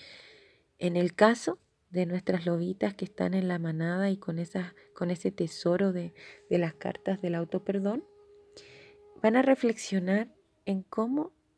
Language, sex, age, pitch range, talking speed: Spanish, female, 30-49, 180-235 Hz, 150 wpm